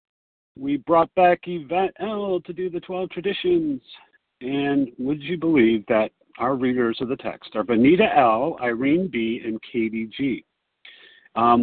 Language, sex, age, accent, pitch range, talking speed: English, male, 50-69, American, 120-175 Hz, 150 wpm